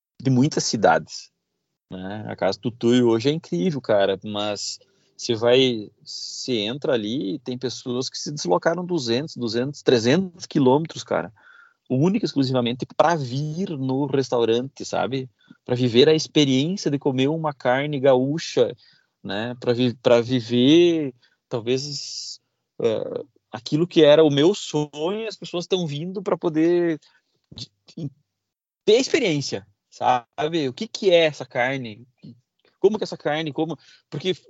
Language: Portuguese